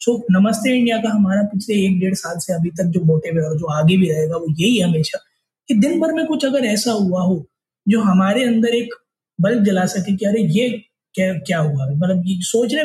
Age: 20-39